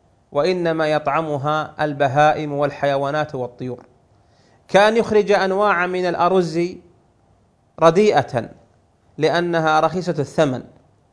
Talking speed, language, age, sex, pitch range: 75 wpm, Arabic, 30-49, male, 135-175 Hz